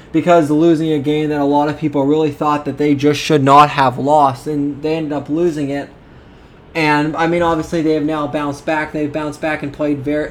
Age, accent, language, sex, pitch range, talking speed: 20-39, American, English, male, 140-155 Hz, 225 wpm